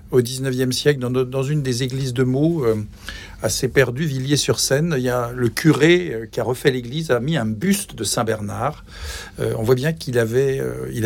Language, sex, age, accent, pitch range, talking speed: French, male, 60-79, French, 110-145 Hz, 190 wpm